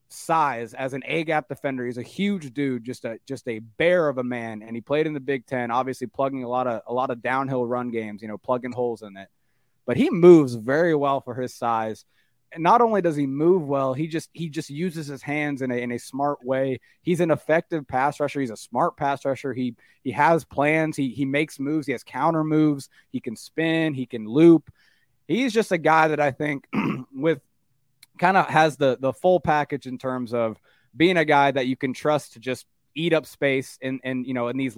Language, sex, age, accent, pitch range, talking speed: English, male, 20-39, American, 125-155 Hz, 230 wpm